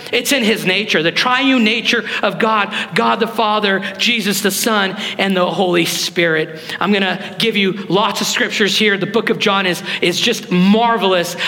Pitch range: 170-200 Hz